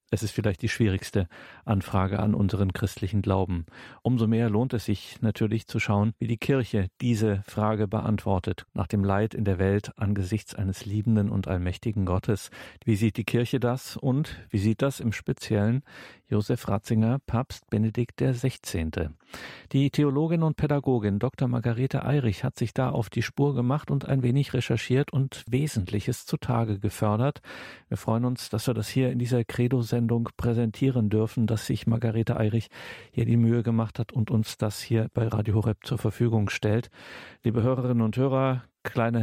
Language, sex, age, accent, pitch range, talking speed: German, male, 50-69, German, 100-120 Hz, 170 wpm